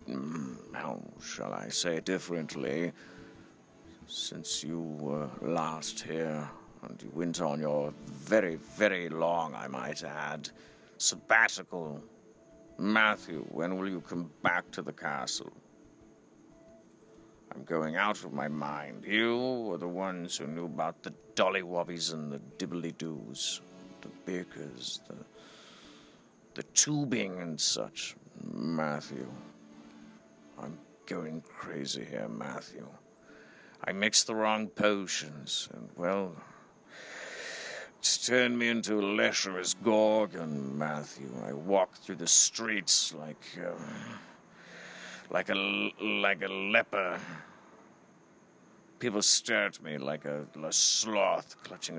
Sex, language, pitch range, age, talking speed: male, English, 75-105 Hz, 50-69, 115 wpm